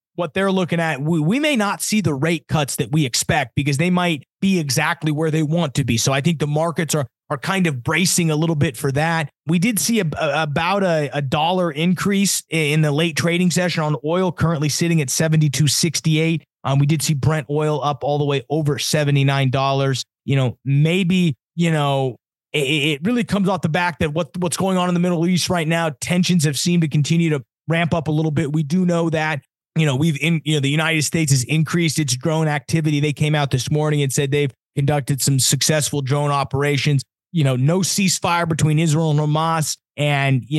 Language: English